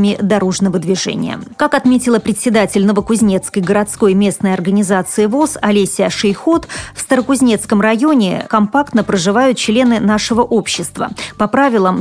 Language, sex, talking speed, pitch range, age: Russian, female, 110 wpm, 195-250 Hz, 30-49